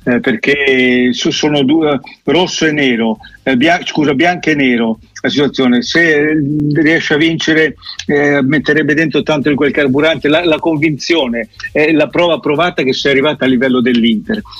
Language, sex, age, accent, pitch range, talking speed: Italian, male, 50-69, native, 130-150 Hz, 170 wpm